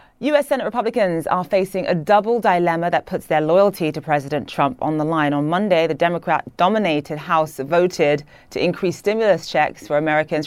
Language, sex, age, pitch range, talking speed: English, female, 30-49, 150-185 Hz, 170 wpm